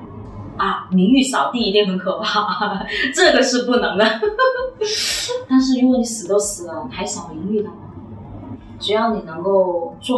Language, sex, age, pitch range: Chinese, female, 30-49, 155-225 Hz